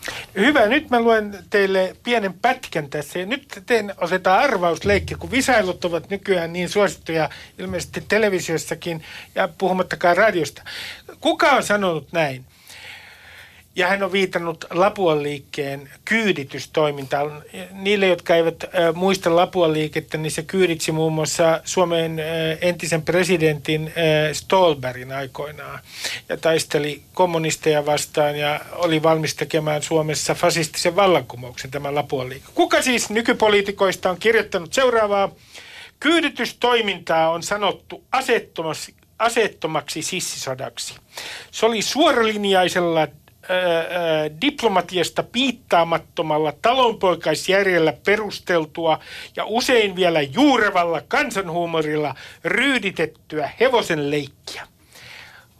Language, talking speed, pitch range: Finnish, 100 wpm, 155-200 Hz